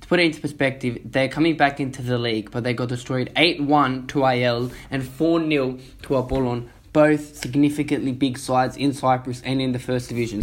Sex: male